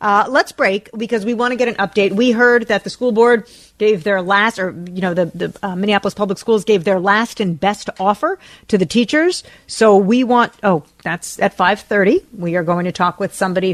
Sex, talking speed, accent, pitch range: female, 225 wpm, American, 190-235 Hz